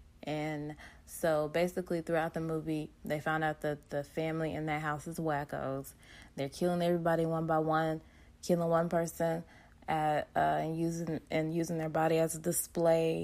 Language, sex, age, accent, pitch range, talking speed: English, female, 20-39, American, 145-165 Hz, 170 wpm